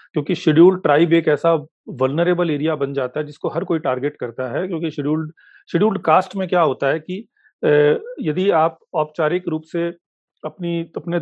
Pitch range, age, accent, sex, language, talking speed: 145-175 Hz, 40-59, Indian, male, English, 165 wpm